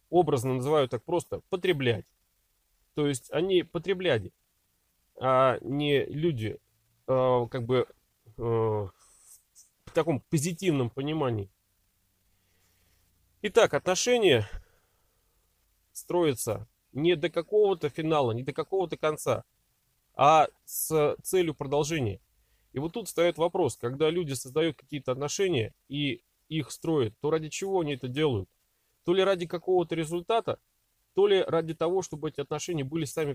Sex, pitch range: male, 115-165 Hz